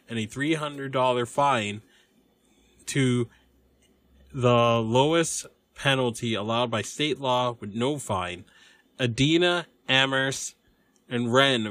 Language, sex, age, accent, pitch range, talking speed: English, male, 20-39, American, 105-130 Hz, 95 wpm